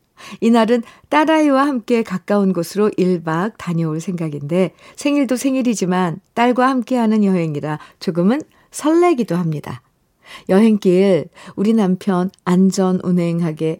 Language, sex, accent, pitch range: Korean, female, native, 185-250 Hz